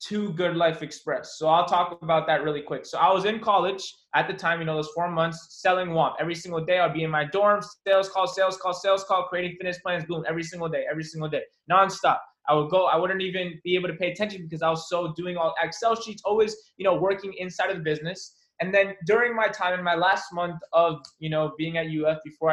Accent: American